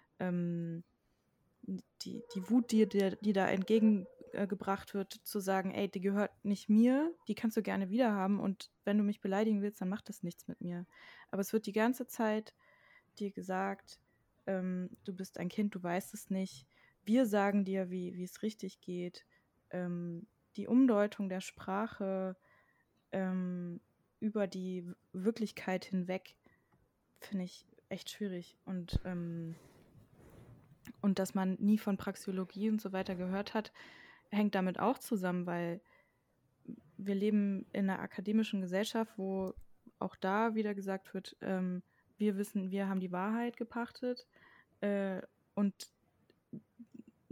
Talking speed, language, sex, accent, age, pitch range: 145 wpm, German, female, German, 20-39, 185-215 Hz